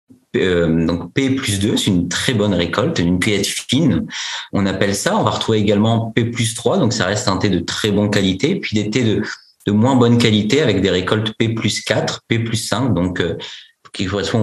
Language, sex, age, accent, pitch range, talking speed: French, male, 40-59, French, 100-125 Hz, 210 wpm